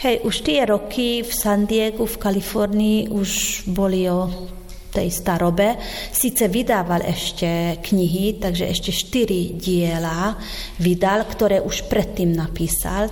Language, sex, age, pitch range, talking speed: Slovak, female, 30-49, 175-195 Hz, 125 wpm